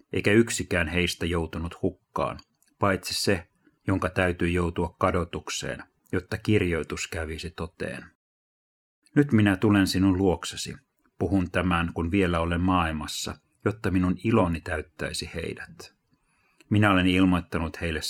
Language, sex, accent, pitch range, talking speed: Finnish, male, native, 85-100 Hz, 115 wpm